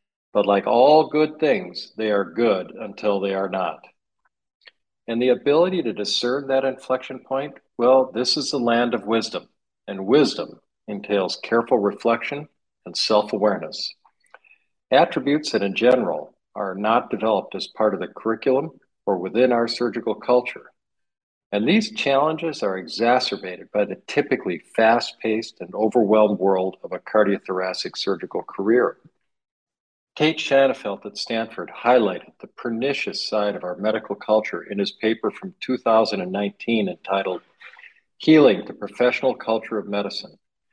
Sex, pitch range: male, 105-130 Hz